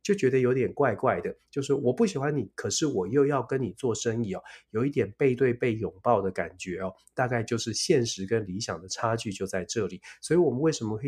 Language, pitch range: Chinese, 105-135 Hz